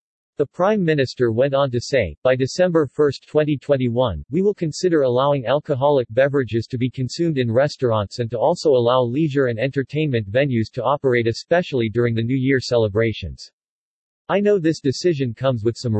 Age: 40-59